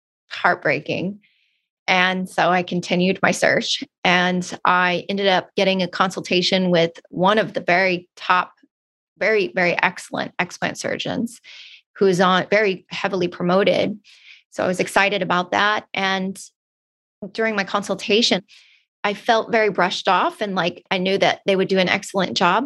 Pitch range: 180-220 Hz